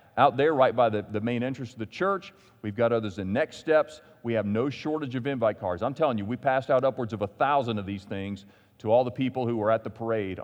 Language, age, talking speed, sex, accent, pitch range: English, 40-59, 265 wpm, male, American, 105-140 Hz